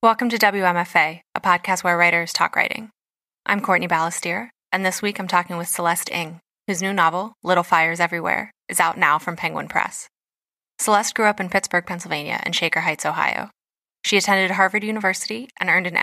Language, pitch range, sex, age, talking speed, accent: English, 170-195 Hz, female, 10-29, 185 wpm, American